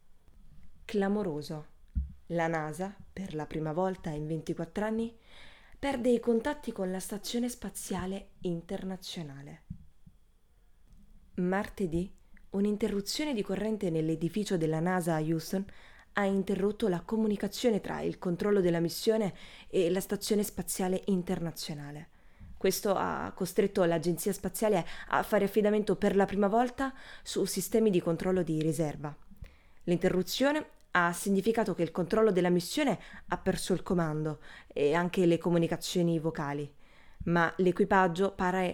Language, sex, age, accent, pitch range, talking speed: Italian, female, 20-39, native, 170-205 Hz, 120 wpm